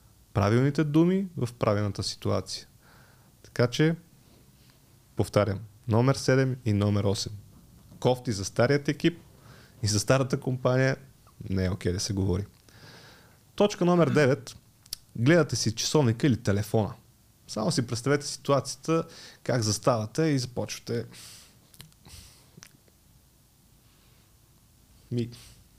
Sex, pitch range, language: male, 105-135 Hz, Bulgarian